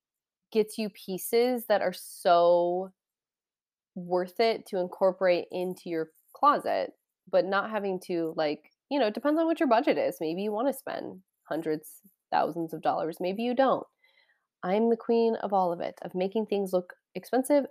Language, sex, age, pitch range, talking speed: English, female, 20-39, 180-225 Hz, 175 wpm